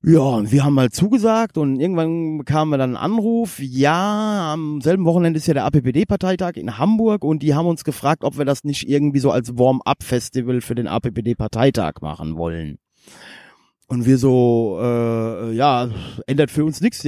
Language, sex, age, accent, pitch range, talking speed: German, male, 30-49, German, 125-170 Hz, 180 wpm